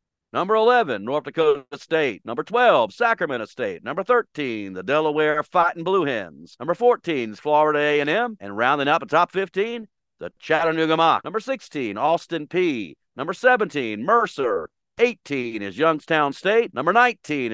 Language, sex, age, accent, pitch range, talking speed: English, male, 50-69, American, 130-195 Hz, 145 wpm